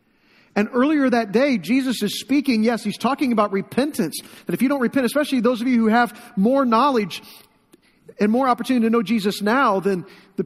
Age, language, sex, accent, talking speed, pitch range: 40-59, English, male, American, 195 wpm, 215-260 Hz